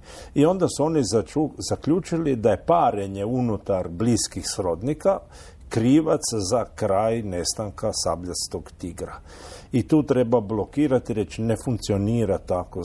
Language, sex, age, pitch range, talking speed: Croatian, male, 50-69, 95-125 Hz, 120 wpm